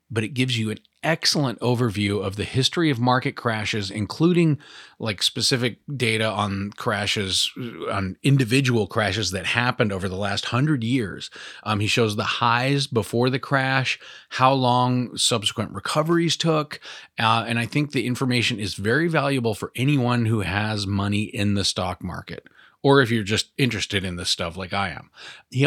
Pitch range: 100-130 Hz